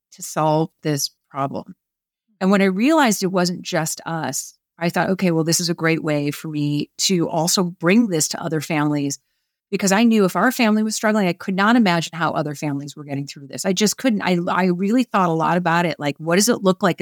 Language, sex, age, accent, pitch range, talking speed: English, female, 30-49, American, 165-205 Hz, 235 wpm